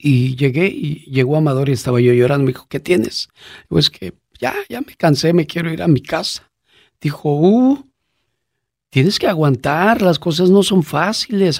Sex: male